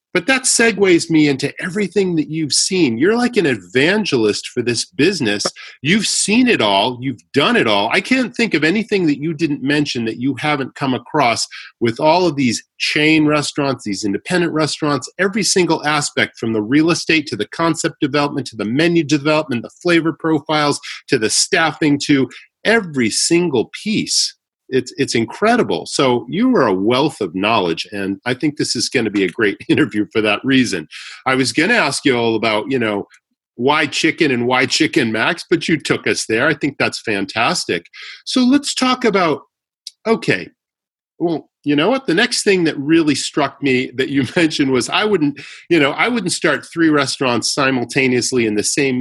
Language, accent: English, American